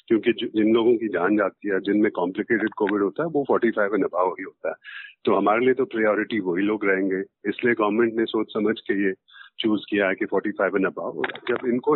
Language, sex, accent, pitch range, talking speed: Hindi, male, native, 100-140 Hz, 220 wpm